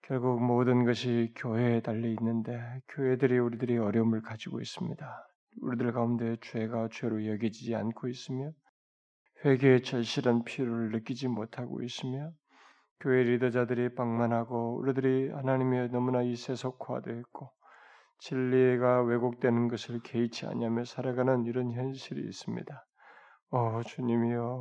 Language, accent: Korean, native